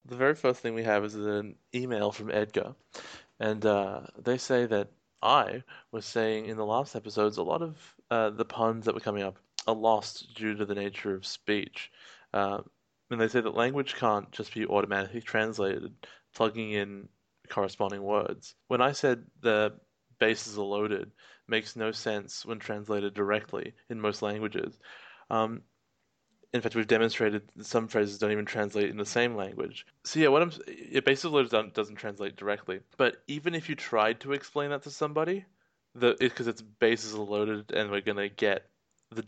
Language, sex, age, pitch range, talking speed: English, male, 20-39, 105-125 Hz, 180 wpm